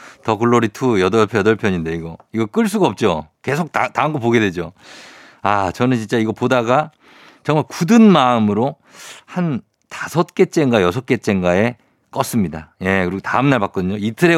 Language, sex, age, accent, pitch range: Korean, male, 50-69, native, 95-130 Hz